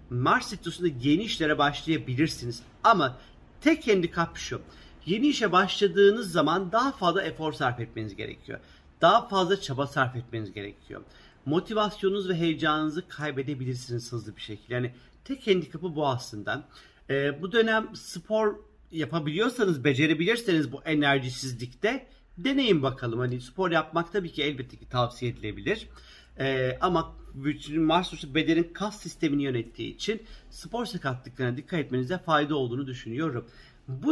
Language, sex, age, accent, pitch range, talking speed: Turkish, male, 50-69, native, 130-185 Hz, 125 wpm